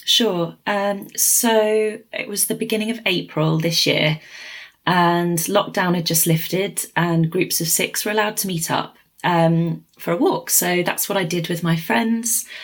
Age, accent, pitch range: 20-39, British, 160-190 Hz